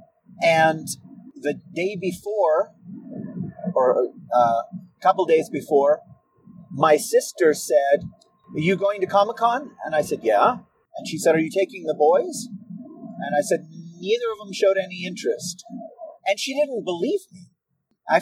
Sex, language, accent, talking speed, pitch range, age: male, English, American, 145 wpm, 180-255 Hz, 40-59